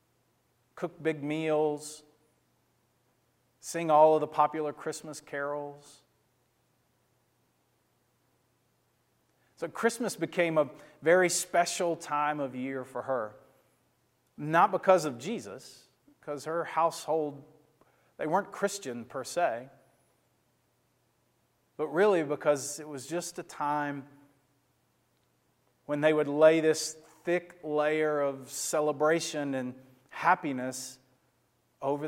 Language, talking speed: English, 100 wpm